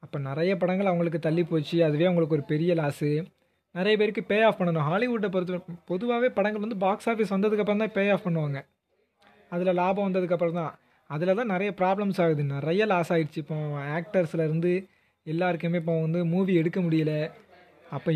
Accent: native